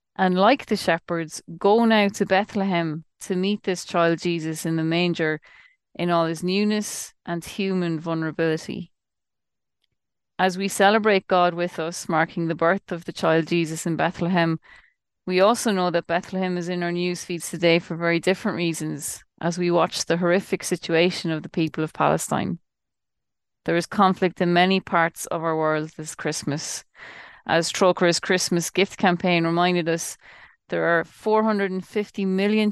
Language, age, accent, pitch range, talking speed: English, 30-49, Irish, 165-190 Hz, 160 wpm